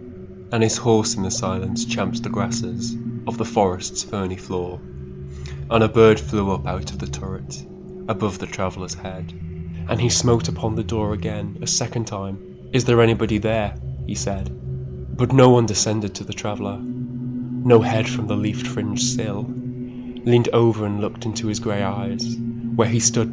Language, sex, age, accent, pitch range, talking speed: English, male, 20-39, British, 95-115 Hz, 175 wpm